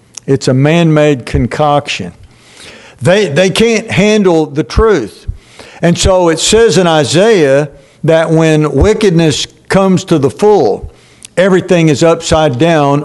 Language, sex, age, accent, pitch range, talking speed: English, male, 60-79, American, 150-180 Hz, 125 wpm